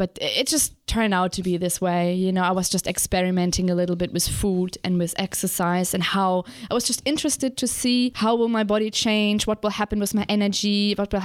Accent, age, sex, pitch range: German, 20-39, female, 190-210 Hz